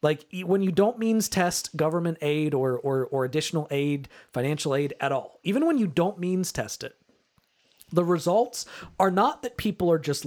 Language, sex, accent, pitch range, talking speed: English, male, American, 155-195 Hz, 185 wpm